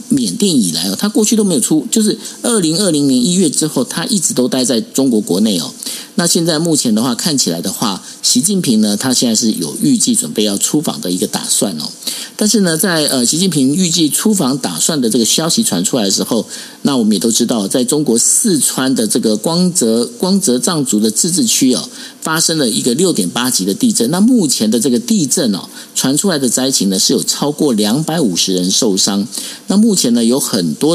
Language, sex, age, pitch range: Chinese, male, 50-69, 160-240 Hz